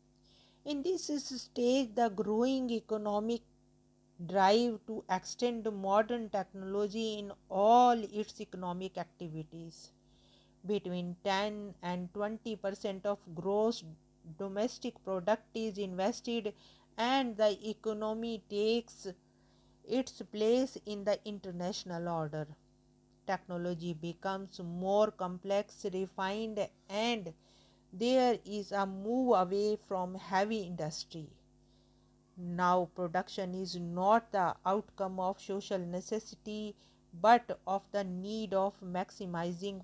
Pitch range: 180-215 Hz